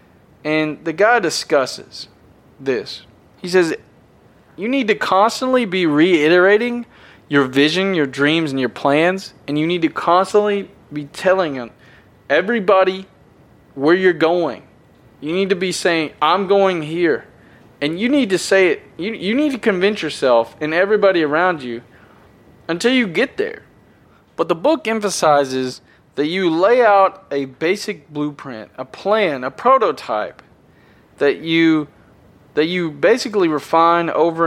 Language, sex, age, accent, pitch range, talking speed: English, male, 20-39, American, 140-195 Hz, 140 wpm